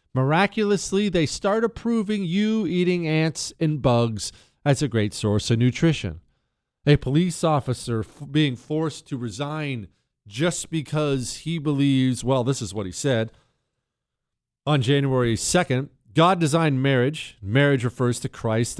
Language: English